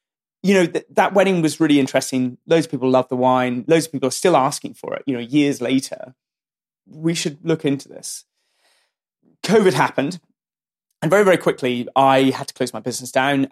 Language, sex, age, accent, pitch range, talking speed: English, male, 20-39, British, 130-185 Hz, 195 wpm